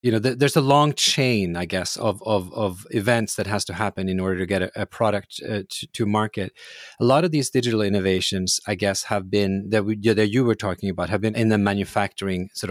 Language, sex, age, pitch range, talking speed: English, male, 30-49, 100-120 Hz, 235 wpm